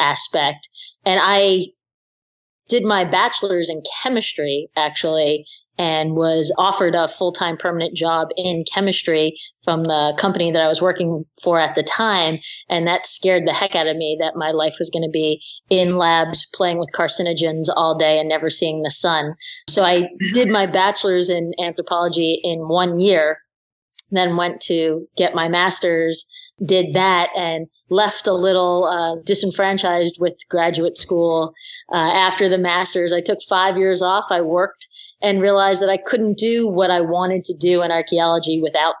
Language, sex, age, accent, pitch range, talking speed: English, female, 20-39, American, 165-195 Hz, 165 wpm